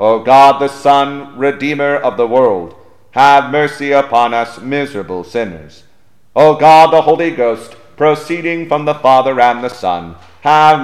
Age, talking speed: 40-59, 150 wpm